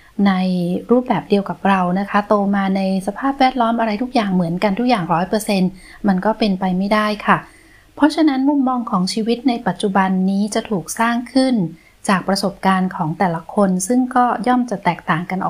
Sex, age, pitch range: female, 20-39, 185-240 Hz